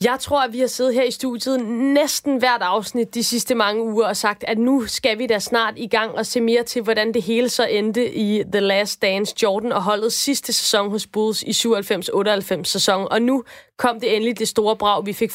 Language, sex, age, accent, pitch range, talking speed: Danish, female, 20-39, native, 215-245 Hz, 230 wpm